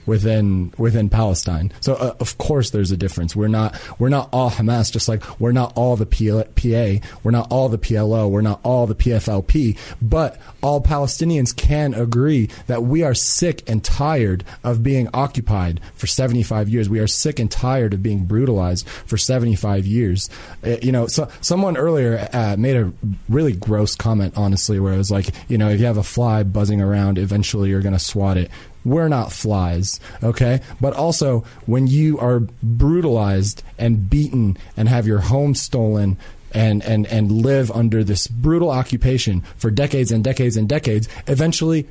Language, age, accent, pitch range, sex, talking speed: English, 30-49, American, 105-130 Hz, male, 190 wpm